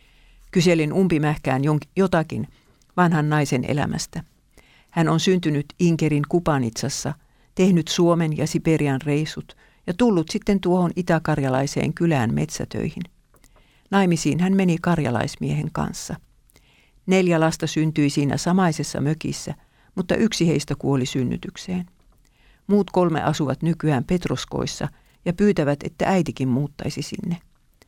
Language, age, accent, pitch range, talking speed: Finnish, 50-69, native, 145-180 Hz, 110 wpm